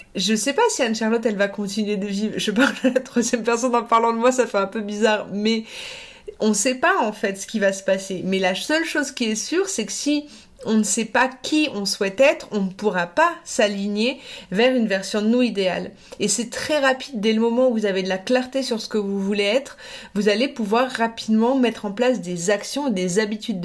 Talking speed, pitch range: 245 wpm, 205-255 Hz